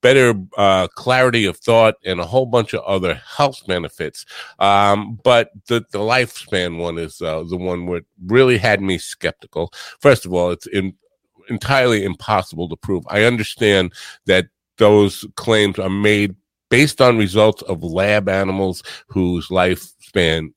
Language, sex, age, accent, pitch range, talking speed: English, male, 50-69, American, 90-120 Hz, 150 wpm